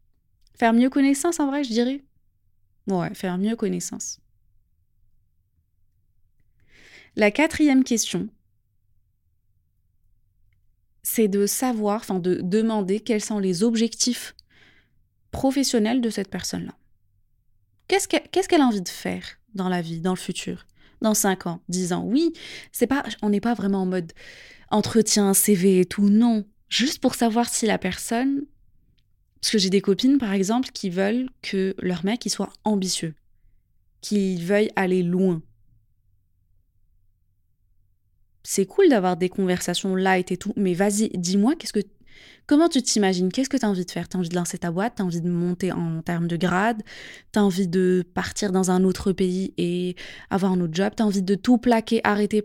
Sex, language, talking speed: female, French, 165 wpm